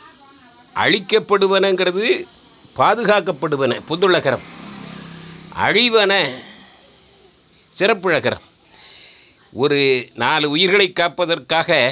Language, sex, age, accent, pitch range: Tamil, male, 50-69, native, 140-190 Hz